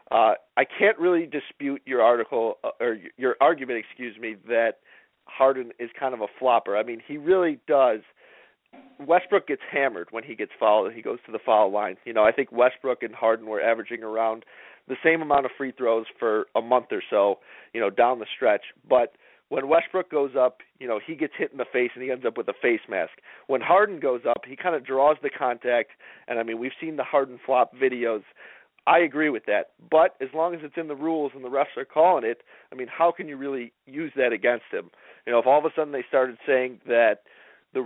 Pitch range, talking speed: 120-155 Hz, 230 wpm